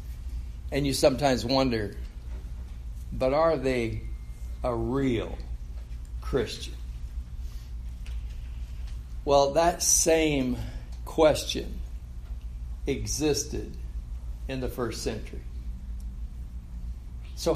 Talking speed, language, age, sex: 70 wpm, English, 60-79, male